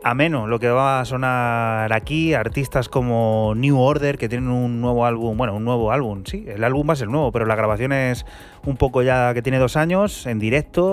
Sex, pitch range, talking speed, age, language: male, 110-125 Hz, 220 wpm, 20-39, Spanish